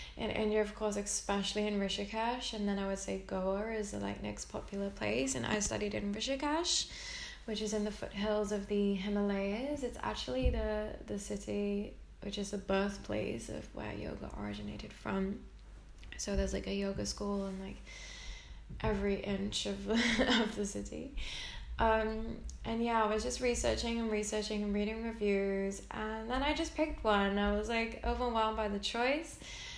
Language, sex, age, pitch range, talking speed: English, female, 20-39, 200-235 Hz, 175 wpm